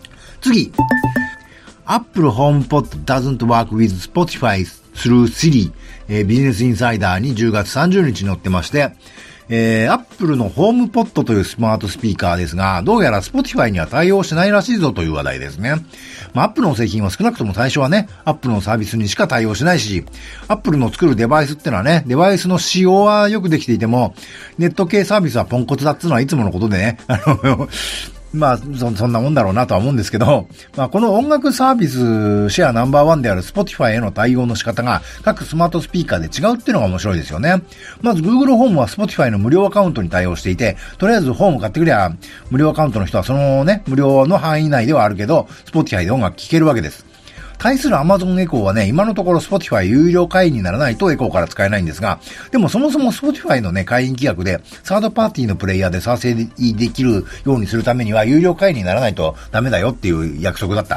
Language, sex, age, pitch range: Japanese, male, 50-69, 105-180 Hz